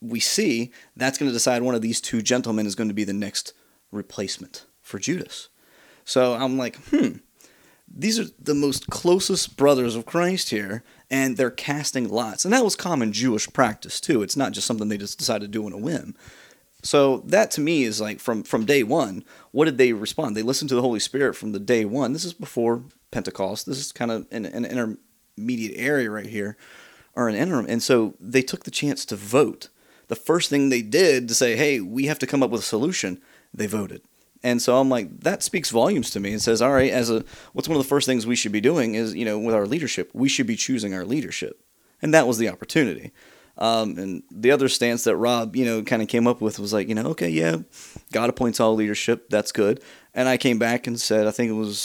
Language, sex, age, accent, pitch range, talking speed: English, male, 30-49, American, 110-135 Hz, 235 wpm